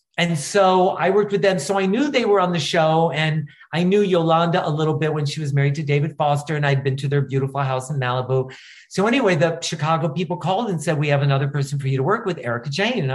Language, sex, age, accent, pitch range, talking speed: English, male, 40-59, American, 145-190 Hz, 260 wpm